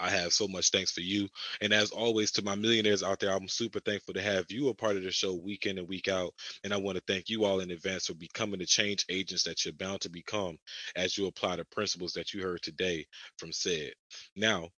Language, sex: English, male